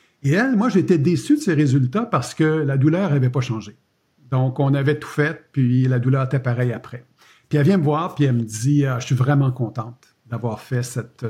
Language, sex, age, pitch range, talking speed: French, male, 50-69, 125-155 Hz, 235 wpm